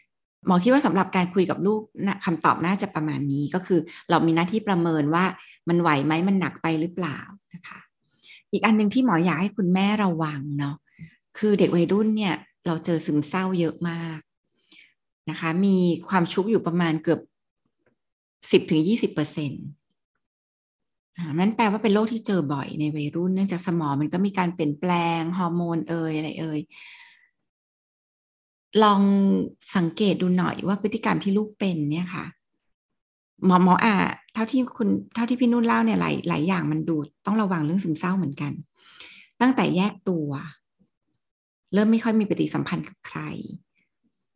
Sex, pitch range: female, 160-205 Hz